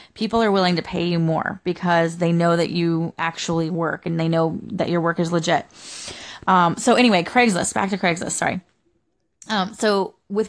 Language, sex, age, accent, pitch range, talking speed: English, female, 20-39, American, 170-200 Hz, 190 wpm